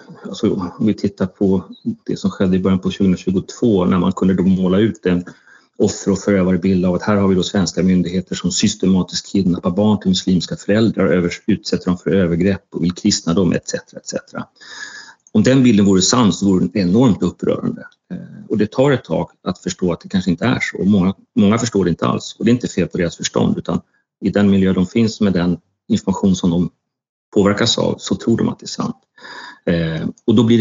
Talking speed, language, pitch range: 210 wpm, Swedish, 90-110 Hz